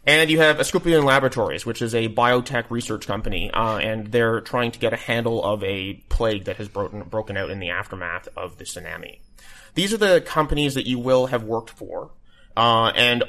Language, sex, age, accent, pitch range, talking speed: English, male, 30-49, American, 110-135 Hz, 205 wpm